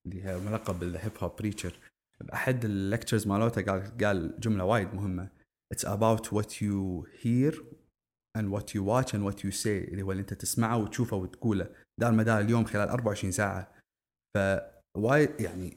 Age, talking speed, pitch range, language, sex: 30-49, 160 wpm, 100-125 Hz, English, male